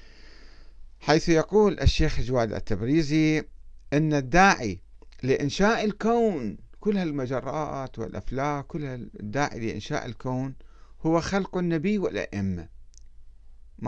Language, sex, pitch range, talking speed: Arabic, male, 110-165 Hz, 90 wpm